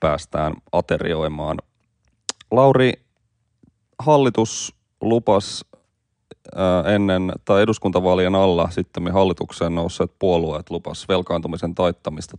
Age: 30-49